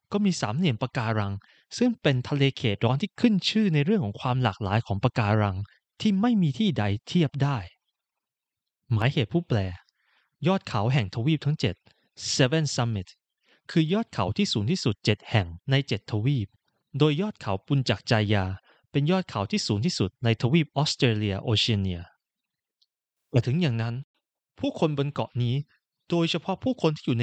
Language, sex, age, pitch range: Thai, male, 20-39, 110-165 Hz